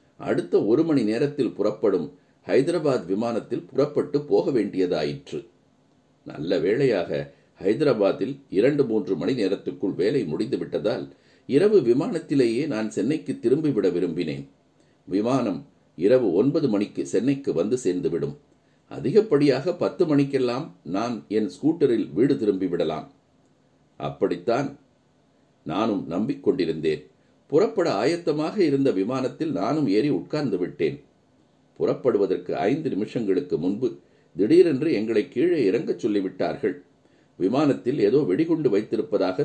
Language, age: Tamil, 50-69